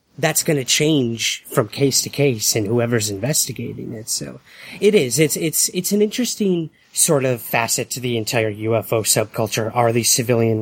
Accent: American